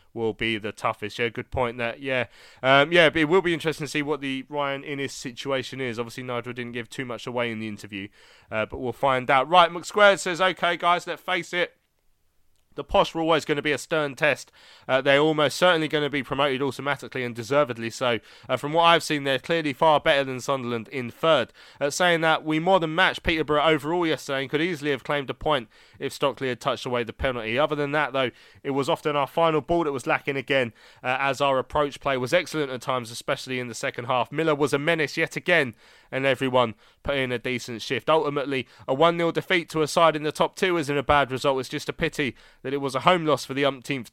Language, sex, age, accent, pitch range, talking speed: English, male, 20-39, British, 125-155 Hz, 235 wpm